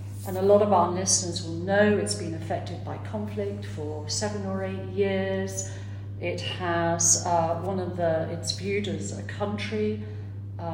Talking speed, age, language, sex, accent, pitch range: 170 wpm, 40-59, English, female, British, 100-170 Hz